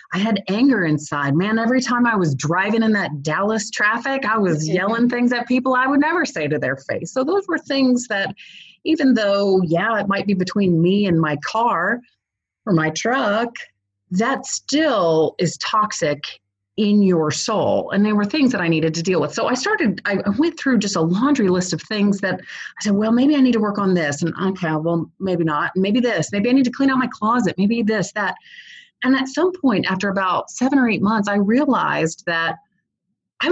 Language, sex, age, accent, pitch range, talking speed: English, female, 30-49, American, 175-245 Hz, 210 wpm